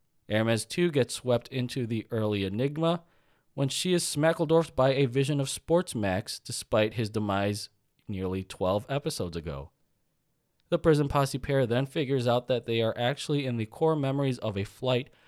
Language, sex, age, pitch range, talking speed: English, male, 20-39, 105-145 Hz, 165 wpm